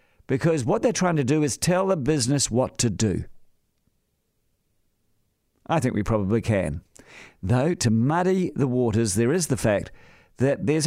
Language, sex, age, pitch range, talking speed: English, male, 50-69, 120-175 Hz, 160 wpm